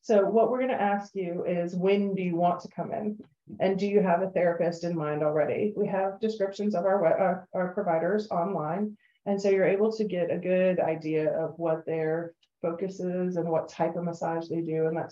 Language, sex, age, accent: English, female, 30-49, American